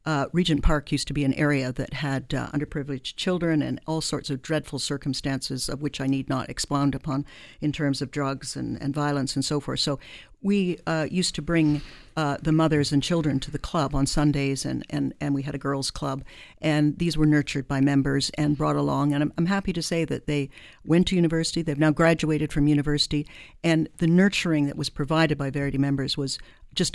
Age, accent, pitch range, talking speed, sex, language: 60-79, American, 140-170 Hz, 210 wpm, female, English